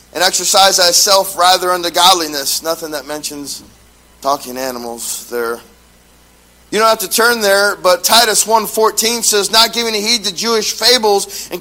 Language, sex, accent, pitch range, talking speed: English, male, American, 130-210 Hz, 150 wpm